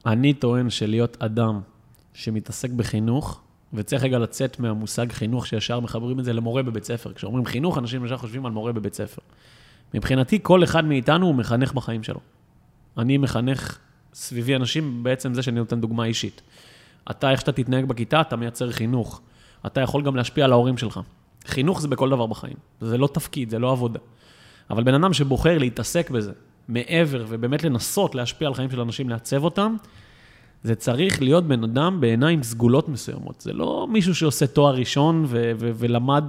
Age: 30-49